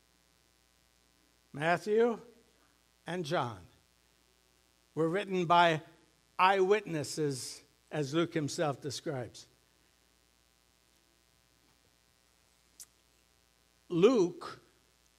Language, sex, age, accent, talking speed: English, male, 60-79, American, 45 wpm